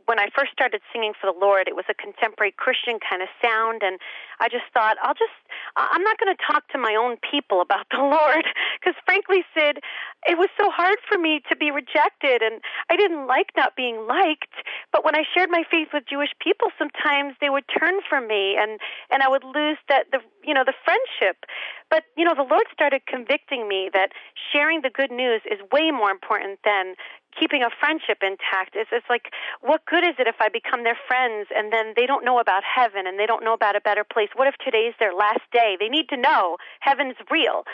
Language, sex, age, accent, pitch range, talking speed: English, female, 40-59, American, 220-310 Hz, 220 wpm